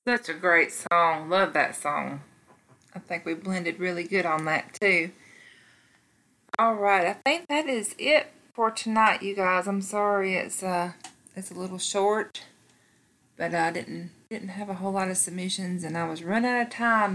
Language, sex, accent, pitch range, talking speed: English, female, American, 165-200 Hz, 180 wpm